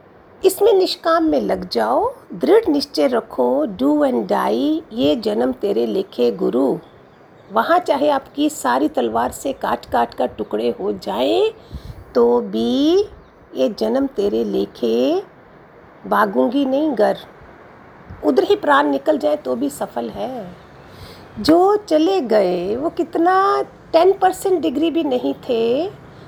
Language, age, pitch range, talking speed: Hindi, 50-69, 270-375 Hz, 130 wpm